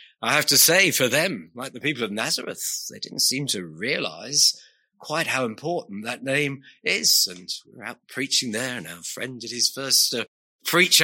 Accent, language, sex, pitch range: British, English, male, 120-160 Hz